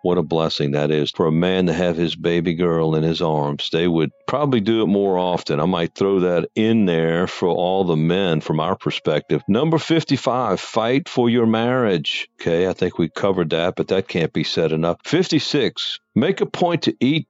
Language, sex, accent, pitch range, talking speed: English, male, American, 80-100 Hz, 210 wpm